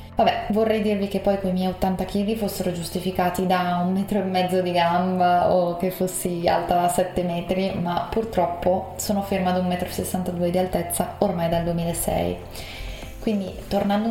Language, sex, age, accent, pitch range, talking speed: Italian, female, 20-39, native, 175-200 Hz, 170 wpm